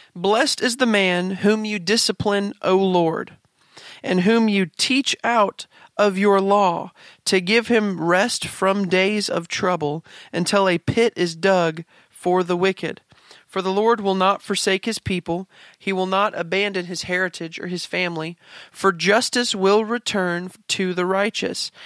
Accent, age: American, 40-59